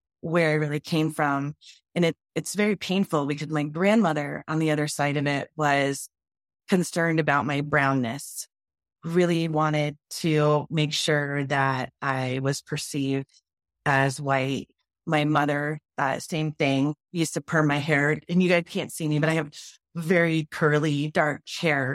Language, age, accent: English, 30-49, American